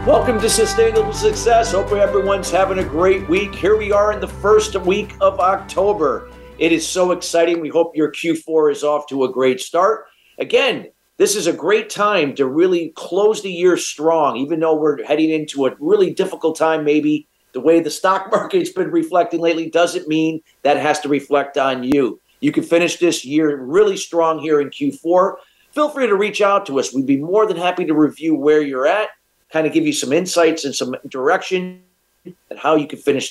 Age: 50-69